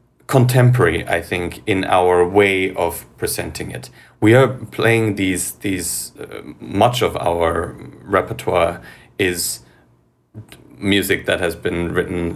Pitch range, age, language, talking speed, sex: 95-110 Hz, 30-49, English, 120 wpm, male